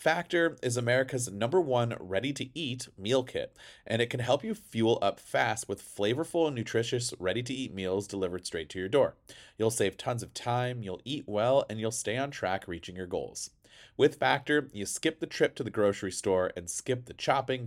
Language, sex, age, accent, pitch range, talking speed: English, male, 30-49, American, 100-130 Hz, 195 wpm